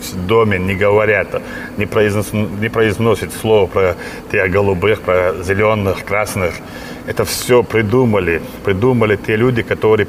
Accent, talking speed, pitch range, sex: native, 120 wpm, 105-120 Hz, male